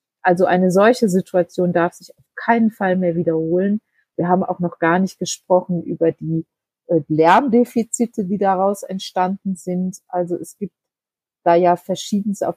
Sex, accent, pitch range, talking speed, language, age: female, German, 170-205 Hz, 150 wpm, German, 30-49